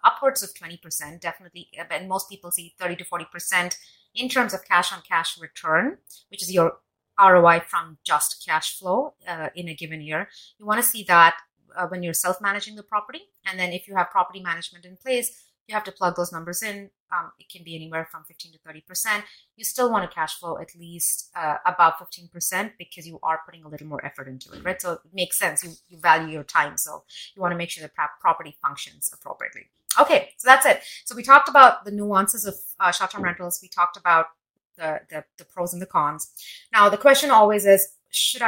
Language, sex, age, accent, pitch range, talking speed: English, female, 30-49, Indian, 170-200 Hz, 210 wpm